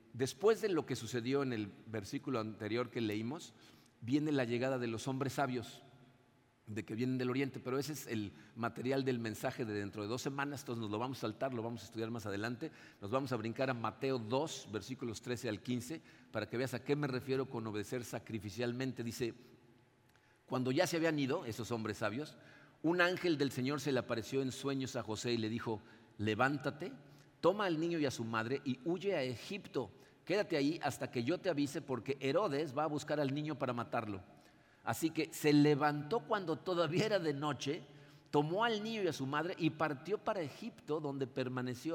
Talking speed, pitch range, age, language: 200 wpm, 120-160 Hz, 50-69, Spanish